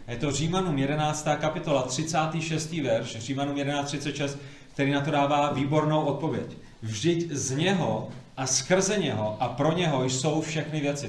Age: 30-49